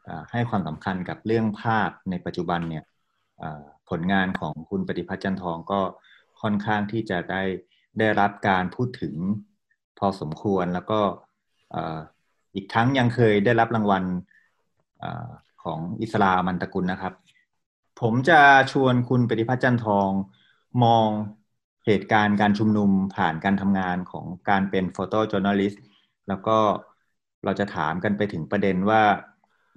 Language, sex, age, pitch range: Thai, male, 30-49, 90-110 Hz